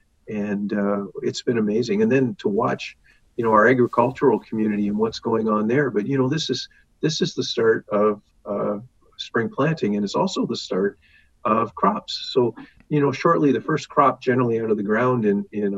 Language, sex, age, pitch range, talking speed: English, male, 50-69, 110-140 Hz, 200 wpm